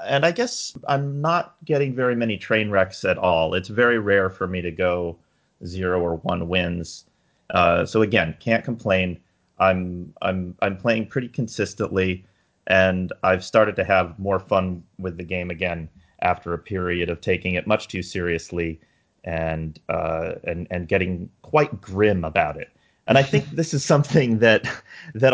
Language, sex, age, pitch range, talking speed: English, male, 30-49, 90-110 Hz, 170 wpm